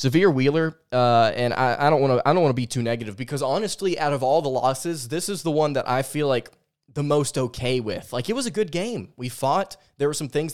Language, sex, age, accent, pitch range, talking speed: English, male, 20-39, American, 120-145 Hz, 245 wpm